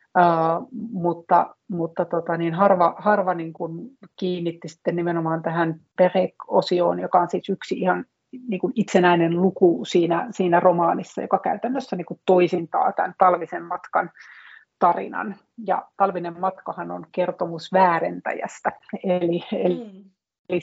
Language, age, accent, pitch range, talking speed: Finnish, 30-49, native, 175-195 Hz, 115 wpm